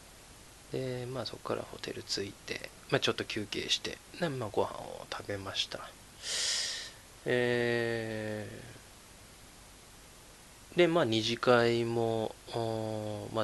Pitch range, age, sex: 105-130 Hz, 20-39, male